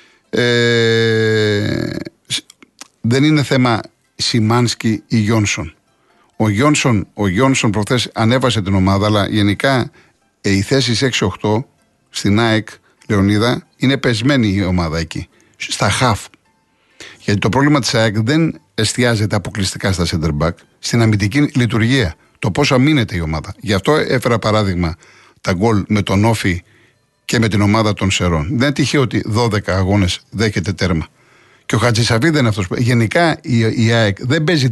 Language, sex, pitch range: Greek, male, 105-140 Hz